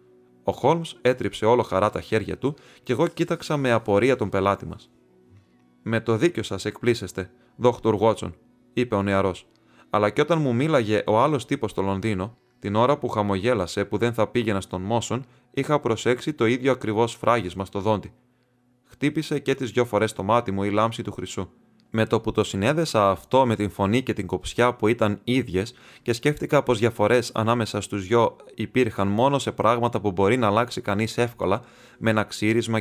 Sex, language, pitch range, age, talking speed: male, Greek, 100-125 Hz, 20-39, 185 wpm